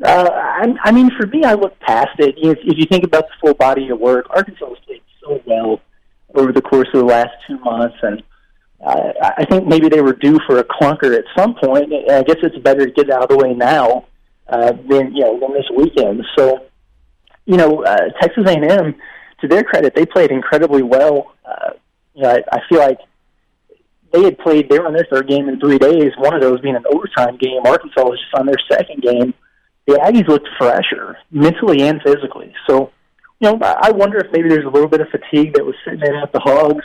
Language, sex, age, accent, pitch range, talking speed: English, male, 30-49, American, 130-160 Hz, 230 wpm